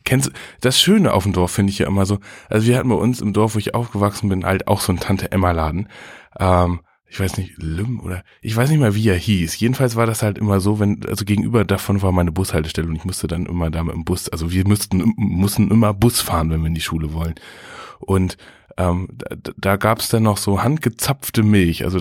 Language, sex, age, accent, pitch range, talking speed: German, male, 20-39, German, 90-110 Hz, 230 wpm